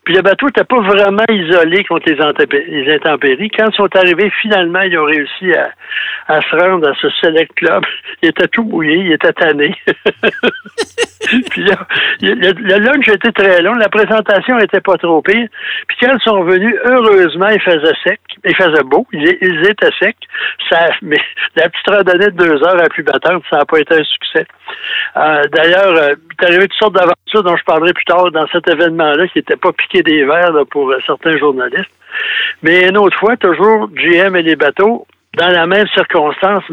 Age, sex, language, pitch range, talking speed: 60-79, male, French, 160-215 Hz, 195 wpm